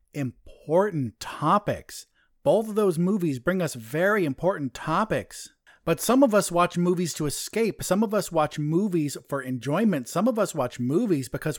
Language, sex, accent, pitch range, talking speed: English, male, American, 135-190 Hz, 165 wpm